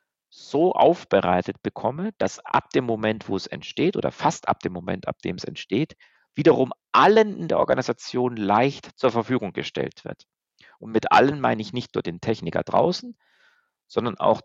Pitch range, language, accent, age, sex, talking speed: 95-160 Hz, German, German, 50-69, male, 170 wpm